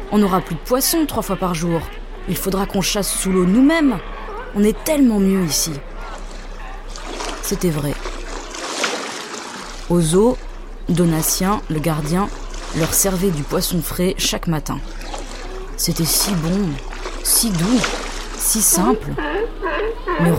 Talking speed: 125 wpm